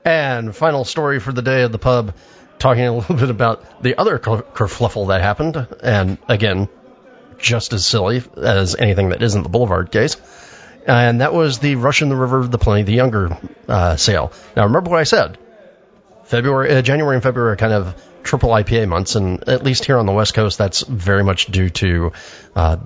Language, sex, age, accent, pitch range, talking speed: English, male, 40-59, American, 95-125 Hz, 200 wpm